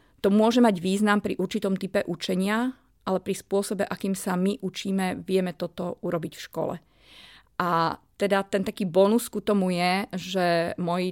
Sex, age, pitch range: female, 30-49, 185-225 Hz